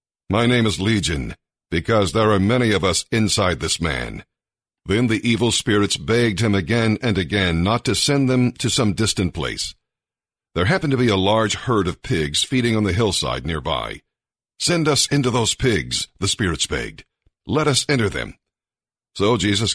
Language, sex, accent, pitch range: English, male, American, 95-125 Hz